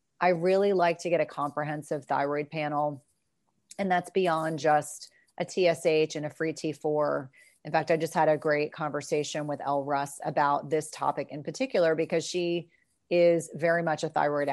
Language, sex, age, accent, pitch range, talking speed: English, female, 30-49, American, 150-170 Hz, 175 wpm